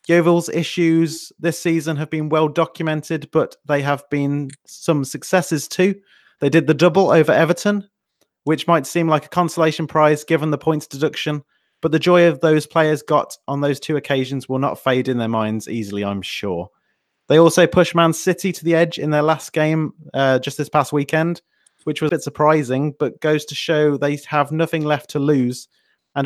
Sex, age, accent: male, 30-49, British